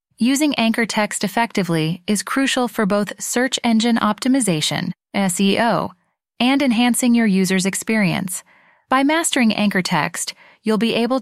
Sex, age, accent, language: female, 20-39, American, English